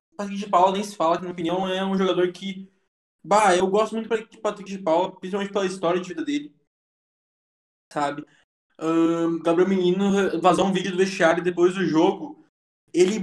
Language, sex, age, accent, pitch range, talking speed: Portuguese, male, 20-39, Brazilian, 180-235 Hz, 175 wpm